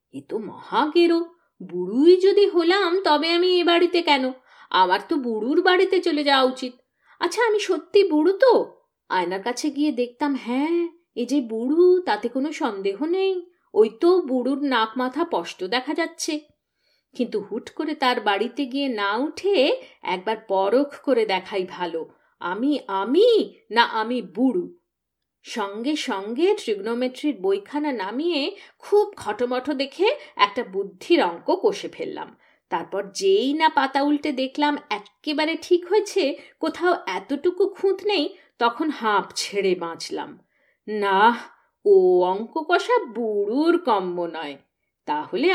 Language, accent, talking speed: Bengali, native, 130 wpm